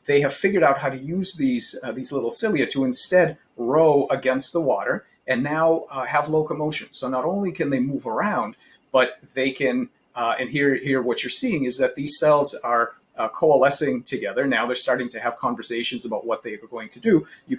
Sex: male